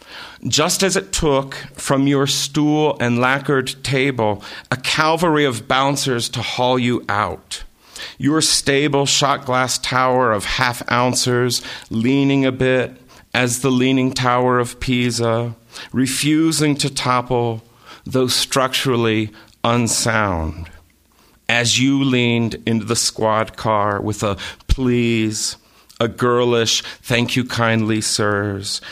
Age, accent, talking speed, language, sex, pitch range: 40-59, American, 110 wpm, English, male, 110-135 Hz